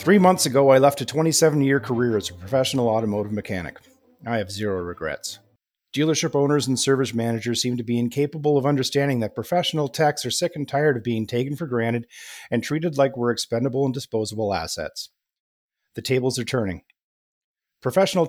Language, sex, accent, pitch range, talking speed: English, male, American, 115-145 Hz, 175 wpm